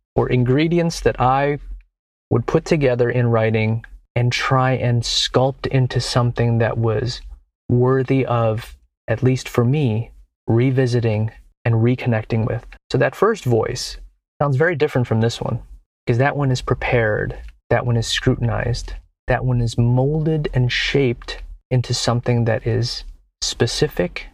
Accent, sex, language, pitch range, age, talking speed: American, male, English, 115-130 Hz, 30-49, 140 wpm